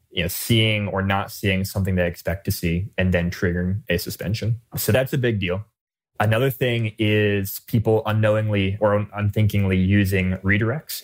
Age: 20-39